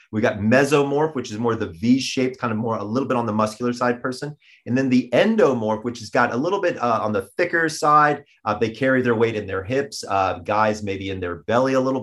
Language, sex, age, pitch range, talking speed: English, male, 30-49, 105-130 Hz, 250 wpm